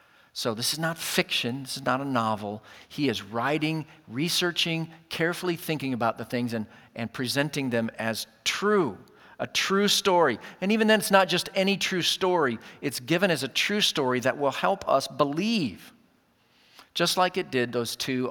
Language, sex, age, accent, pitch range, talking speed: English, male, 50-69, American, 125-180 Hz, 175 wpm